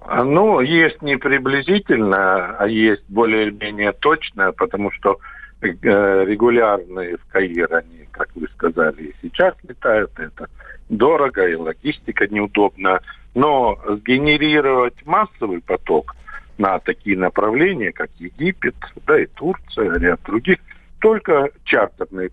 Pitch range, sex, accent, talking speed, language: 105-175 Hz, male, native, 105 wpm, Russian